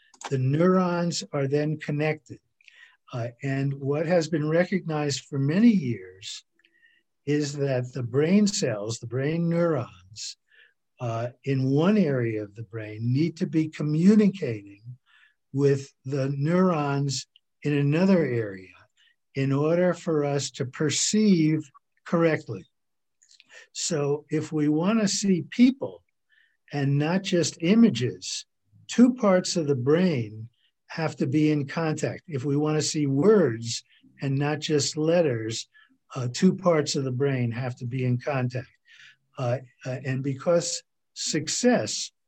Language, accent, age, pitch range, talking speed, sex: English, American, 60-79, 135-170 Hz, 130 wpm, male